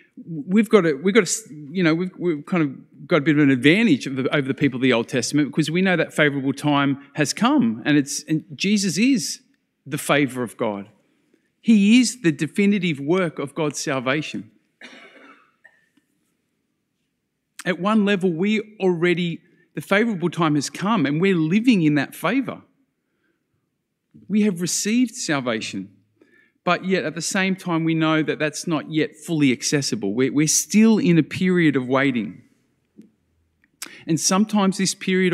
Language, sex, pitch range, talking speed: English, male, 150-195 Hz, 165 wpm